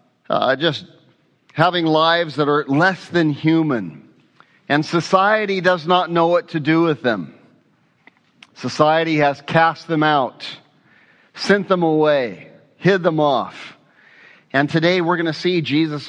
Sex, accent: male, American